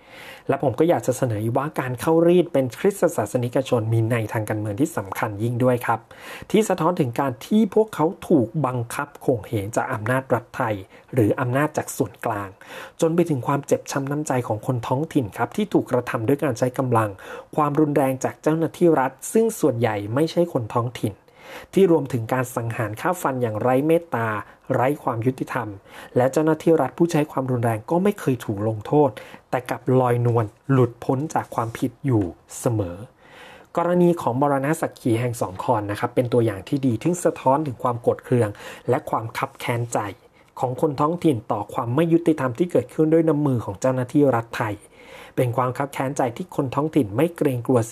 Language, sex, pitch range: Thai, male, 120-155 Hz